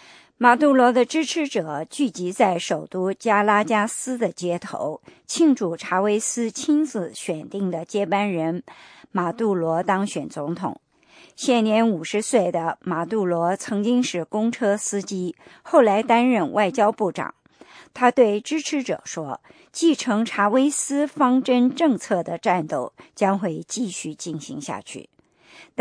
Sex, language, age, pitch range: male, English, 50-69, 180-255 Hz